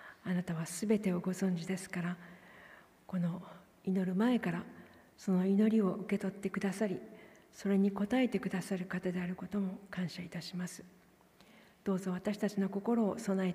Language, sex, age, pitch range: Japanese, female, 40-59, 185-205 Hz